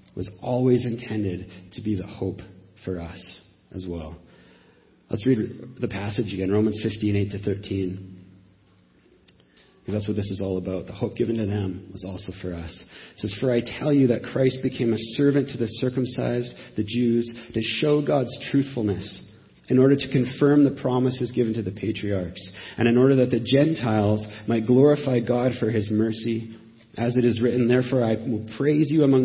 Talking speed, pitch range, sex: 190 wpm, 105-130 Hz, male